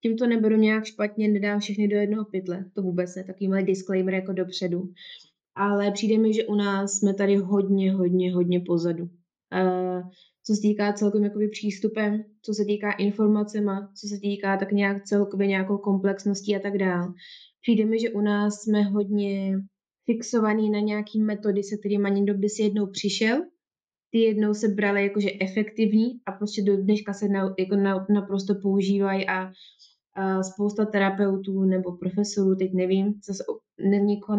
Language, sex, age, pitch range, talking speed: Slovak, female, 20-39, 195-210 Hz, 165 wpm